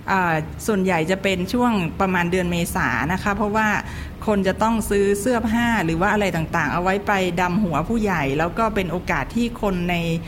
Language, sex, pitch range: Thai, female, 170-210 Hz